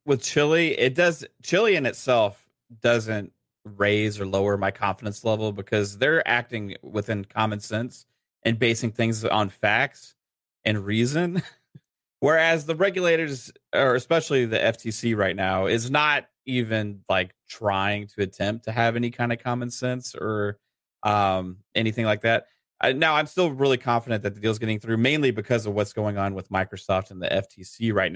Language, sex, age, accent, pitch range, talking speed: English, male, 30-49, American, 105-125 Hz, 165 wpm